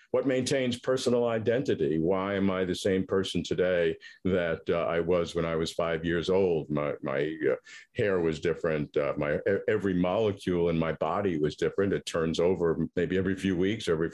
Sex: male